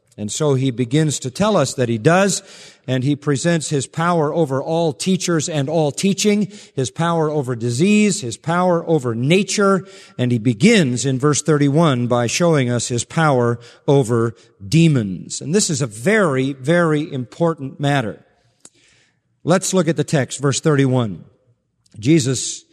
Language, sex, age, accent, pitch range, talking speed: English, male, 50-69, American, 130-165 Hz, 155 wpm